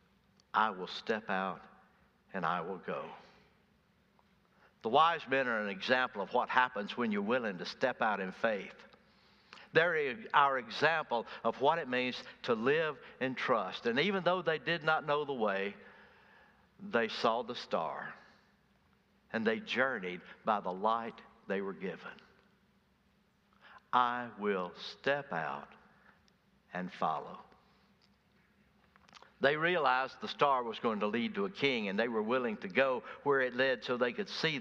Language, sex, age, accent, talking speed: English, male, 60-79, American, 155 wpm